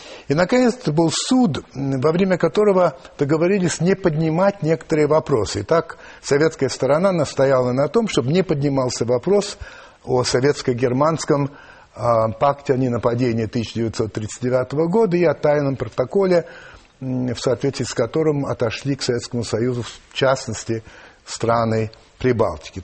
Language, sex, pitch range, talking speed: Russian, male, 130-190 Hz, 125 wpm